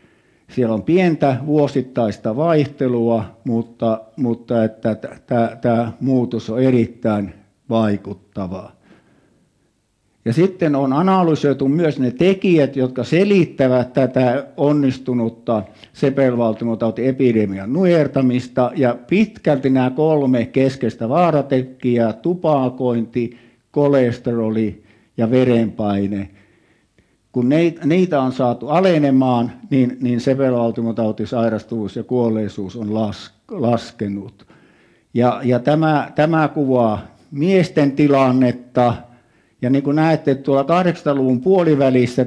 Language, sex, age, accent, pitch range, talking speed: Finnish, male, 60-79, native, 115-145 Hz, 90 wpm